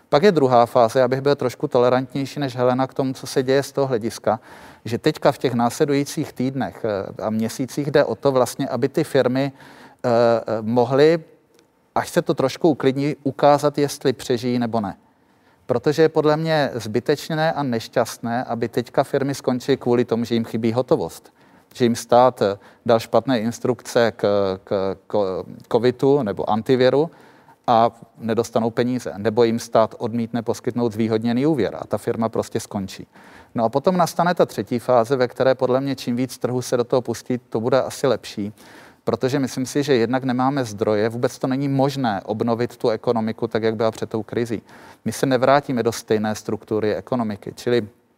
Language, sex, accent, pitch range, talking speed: Czech, male, native, 115-135 Hz, 170 wpm